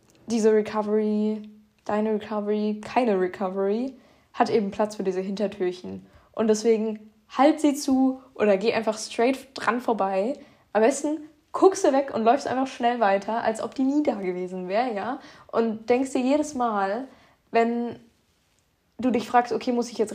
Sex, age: female, 10-29